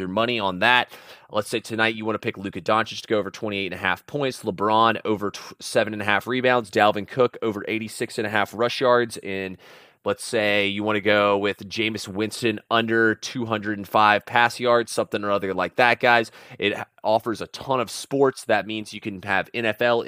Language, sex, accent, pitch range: English, male, American, 105-120 Hz